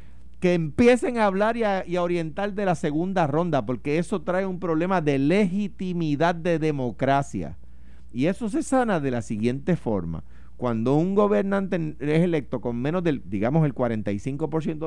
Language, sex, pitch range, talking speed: Spanish, male, 110-165 Hz, 160 wpm